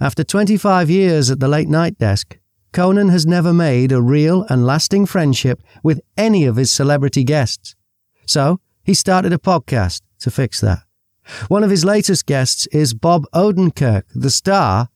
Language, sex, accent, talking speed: English, male, British, 160 wpm